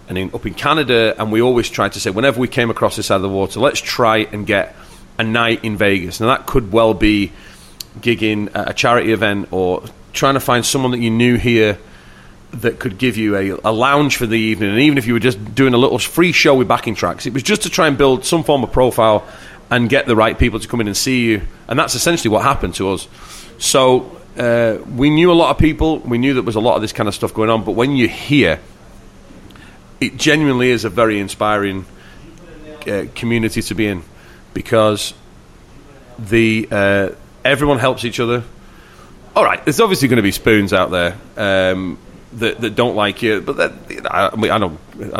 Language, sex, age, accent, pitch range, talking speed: English, male, 30-49, British, 100-125 Hz, 215 wpm